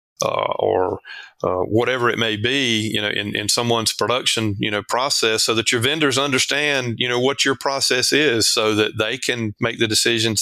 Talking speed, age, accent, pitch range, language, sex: 195 wpm, 30-49, American, 110-130 Hz, English, male